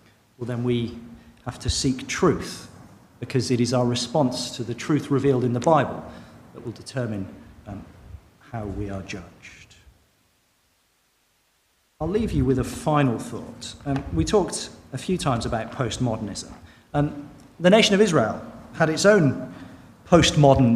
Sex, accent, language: male, British, English